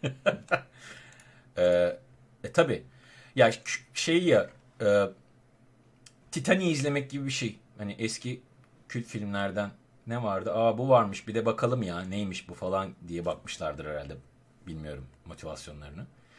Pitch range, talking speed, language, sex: 95-130 Hz, 125 wpm, Turkish, male